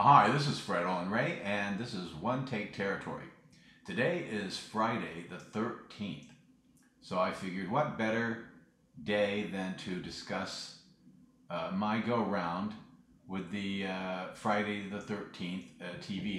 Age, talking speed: 50-69, 130 wpm